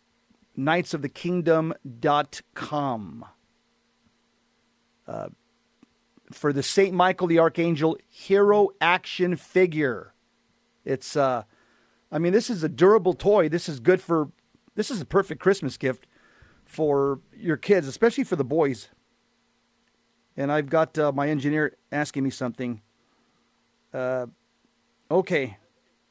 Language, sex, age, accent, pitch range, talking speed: English, male, 40-59, American, 145-195 Hz, 115 wpm